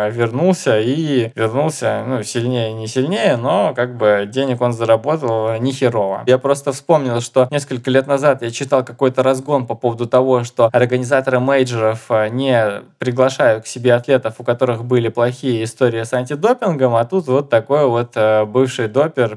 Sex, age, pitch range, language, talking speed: male, 20-39, 115-135 Hz, Russian, 155 wpm